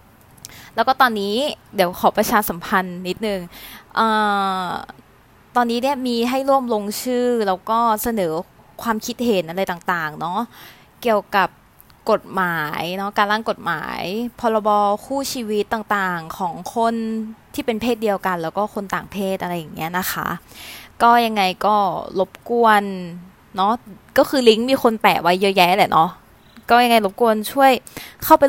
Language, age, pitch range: Thai, 20-39, 190-240 Hz